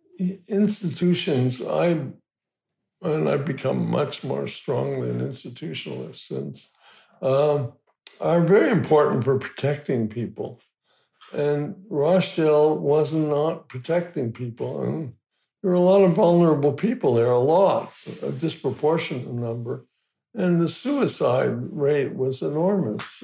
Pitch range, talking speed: 130-170 Hz, 115 wpm